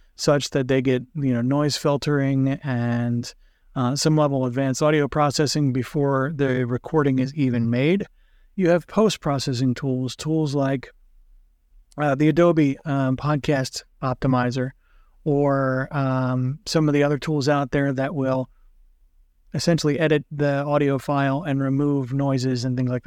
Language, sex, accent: English, male, American